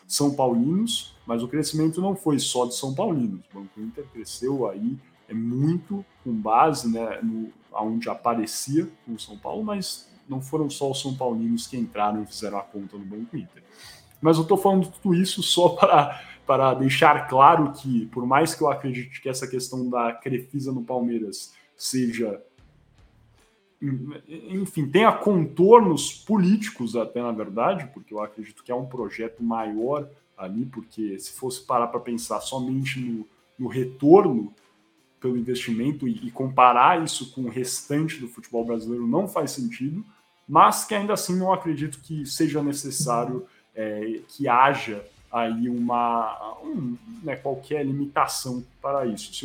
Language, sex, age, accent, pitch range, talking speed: Portuguese, male, 10-29, Brazilian, 115-155 Hz, 155 wpm